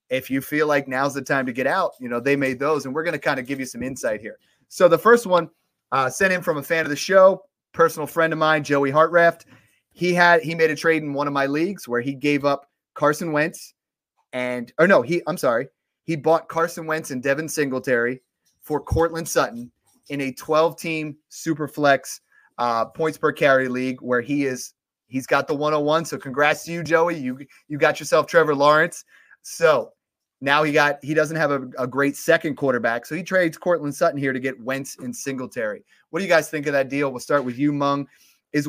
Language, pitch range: English, 130-160 Hz